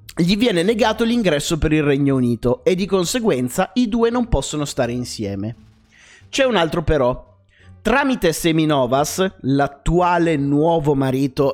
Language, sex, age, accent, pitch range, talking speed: Italian, male, 30-49, native, 130-190 Hz, 135 wpm